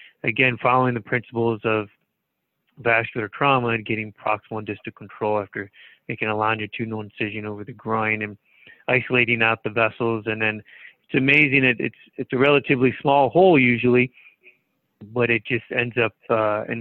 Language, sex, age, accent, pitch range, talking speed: English, male, 30-49, American, 110-125 Hz, 155 wpm